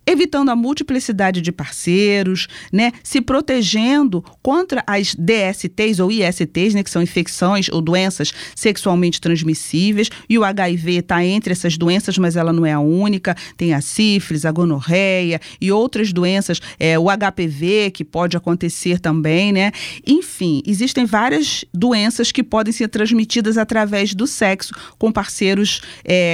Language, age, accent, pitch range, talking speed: Portuguese, 40-59, Brazilian, 180-235 Hz, 145 wpm